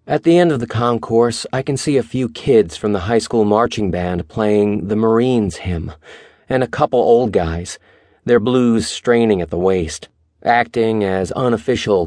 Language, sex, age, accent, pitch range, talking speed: English, male, 40-59, American, 100-125 Hz, 180 wpm